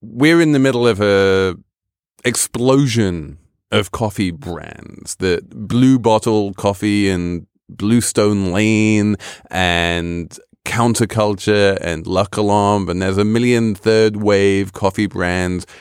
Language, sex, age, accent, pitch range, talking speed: English, male, 30-49, British, 90-115 Hz, 115 wpm